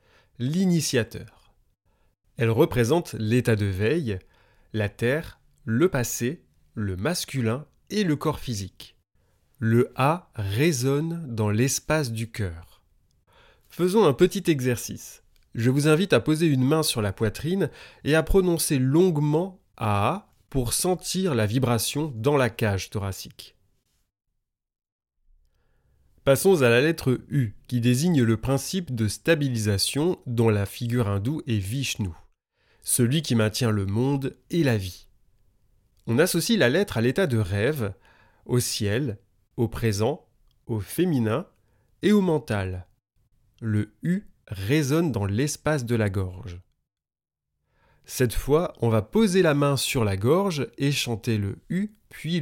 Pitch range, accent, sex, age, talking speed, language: 105-150 Hz, French, male, 30-49, 135 wpm, French